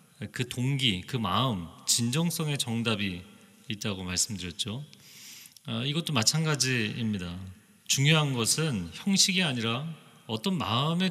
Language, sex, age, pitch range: Korean, male, 40-59, 110-150 Hz